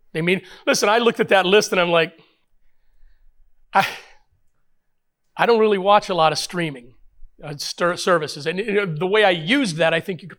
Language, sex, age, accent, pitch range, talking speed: English, male, 40-59, American, 155-220 Hz, 180 wpm